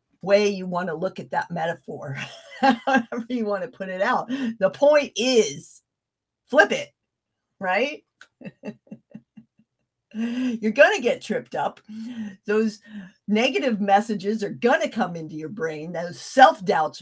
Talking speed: 135 wpm